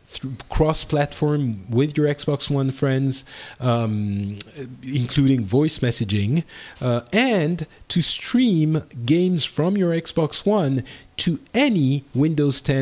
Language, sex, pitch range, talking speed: English, male, 110-145 Hz, 105 wpm